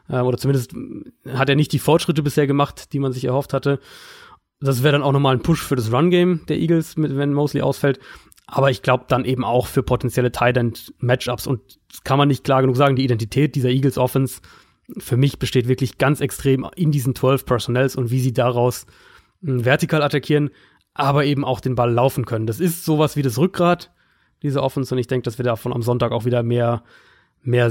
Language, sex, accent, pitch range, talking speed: German, male, German, 125-145 Hz, 205 wpm